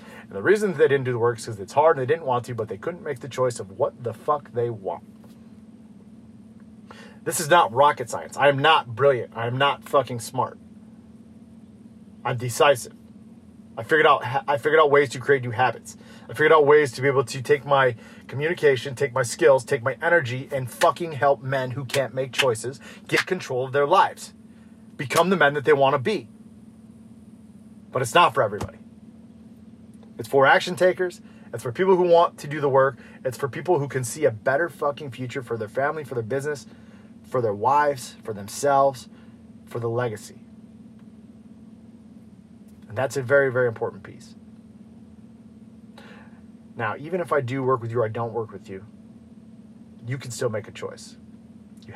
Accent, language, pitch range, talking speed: American, English, 135-220 Hz, 190 wpm